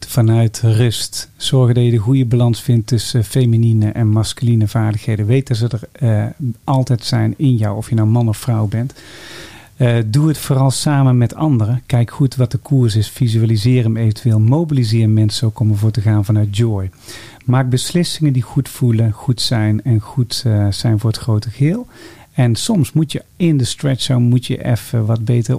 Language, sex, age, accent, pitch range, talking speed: Dutch, male, 40-59, Dutch, 115-135 Hz, 195 wpm